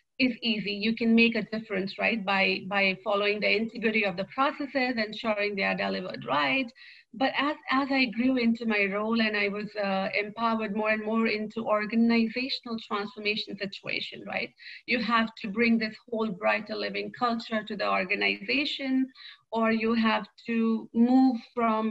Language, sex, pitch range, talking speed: English, female, 205-235 Hz, 165 wpm